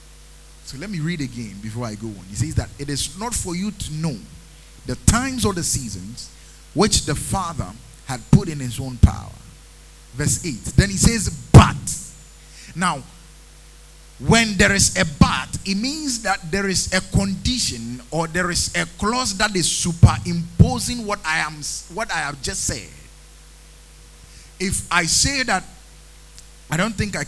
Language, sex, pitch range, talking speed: English, male, 125-185 Hz, 165 wpm